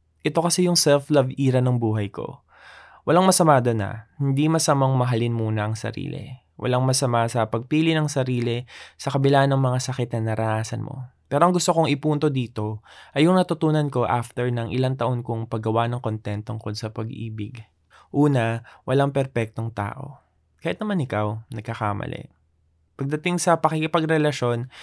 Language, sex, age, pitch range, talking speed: Filipino, male, 20-39, 115-145 Hz, 150 wpm